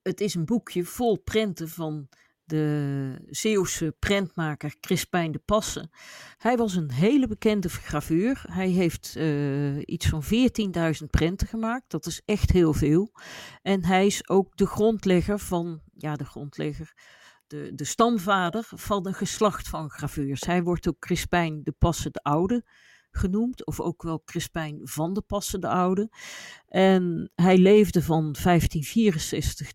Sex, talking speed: female, 145 wpm